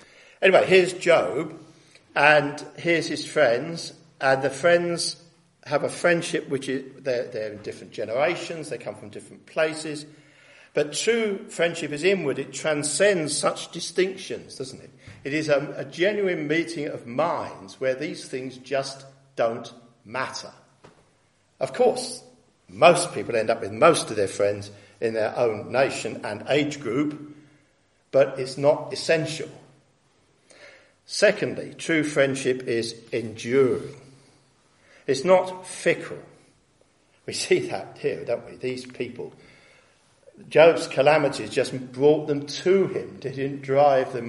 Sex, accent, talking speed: male, British, 135 wpm